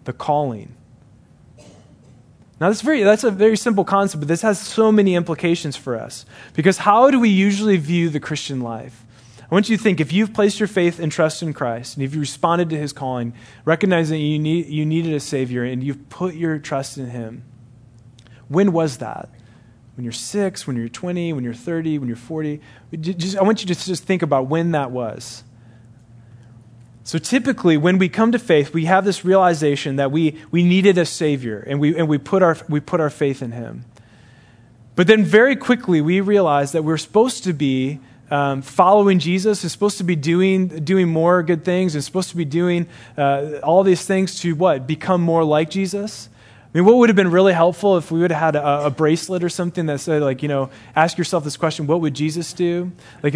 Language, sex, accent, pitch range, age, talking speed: English, male, American, 135-185 Hz, 20-39, 205 wpm